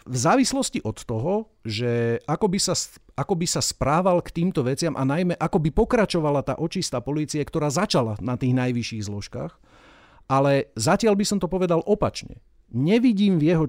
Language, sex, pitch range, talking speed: Slovak, male, 120-160 Hz, 170 wpm